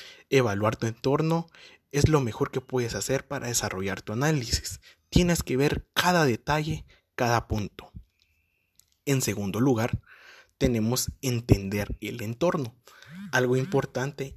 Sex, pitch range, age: male, 105-140 Hz, 20-39